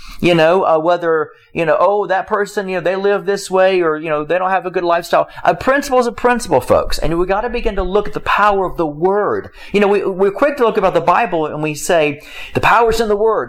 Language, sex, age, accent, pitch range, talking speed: English, male, 40-59, American, 170-210 Hz, 270 wpm